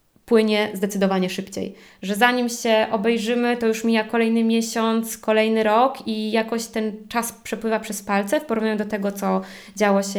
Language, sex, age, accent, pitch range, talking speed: Polish, female, 20-39, native, 205-240 Hz, 165 wpm